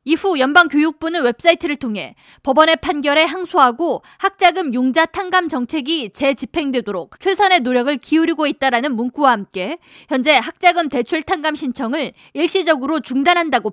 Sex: female